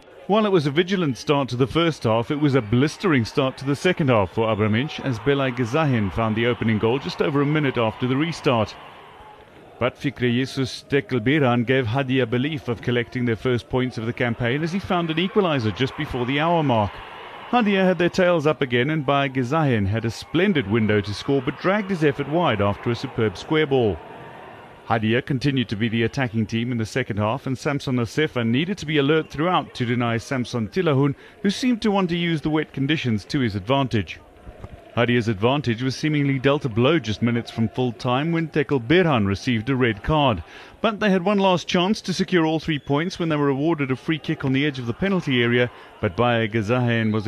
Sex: male